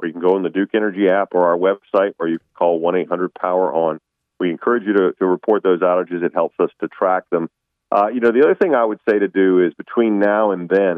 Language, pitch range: English, 85-105 Hz